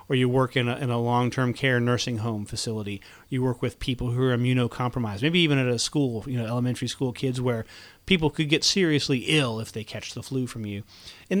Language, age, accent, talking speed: English, 30-49, American, 225 wpm